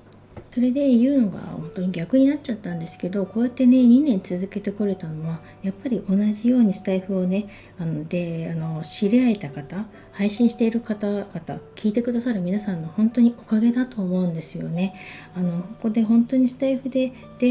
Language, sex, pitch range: Japanese, female, 175-235 Hz